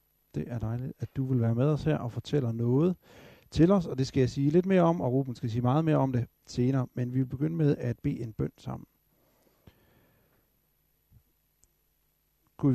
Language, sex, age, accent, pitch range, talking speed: Danish, male, 60-79, native, 120-150 Hz, 205 wpm